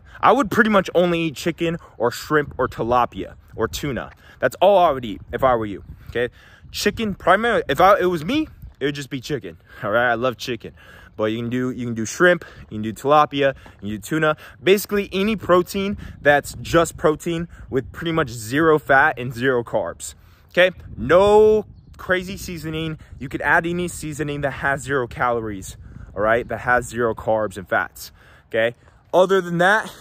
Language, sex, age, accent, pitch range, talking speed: English, male, 20-39, American, 115-170 Hz, 190 wpm